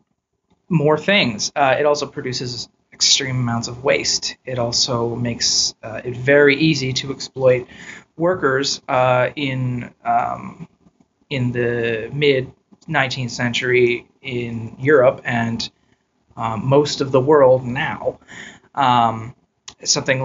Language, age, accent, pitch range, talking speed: English, 30-49, American, 120-155 Hz, 115 wpm